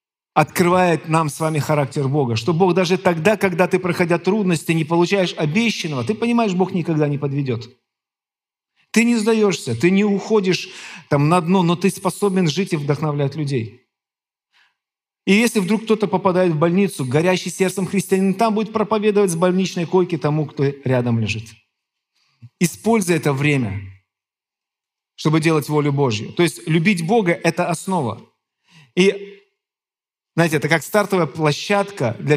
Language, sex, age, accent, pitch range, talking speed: Russian, male, 50-69, native, 150-195 Hz, 145 wpm